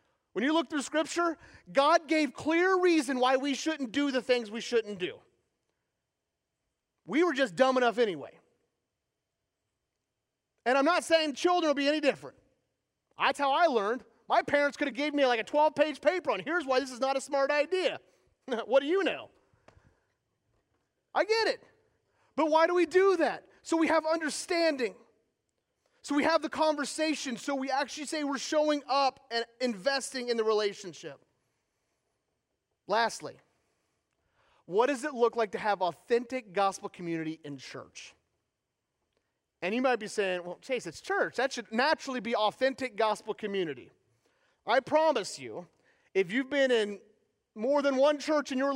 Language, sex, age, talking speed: English, male, 30-49, 160 wpm